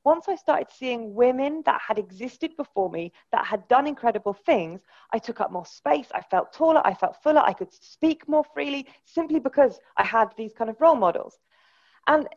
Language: English